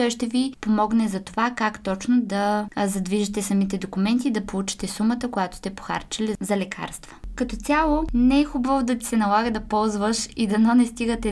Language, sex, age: Bulgarian, female, 20-39